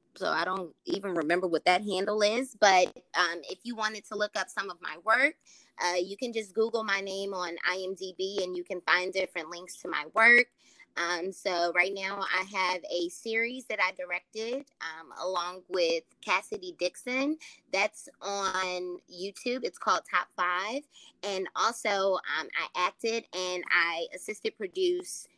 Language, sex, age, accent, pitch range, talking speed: English, female, 20-39, American, 180-225 Hz, 170 wpm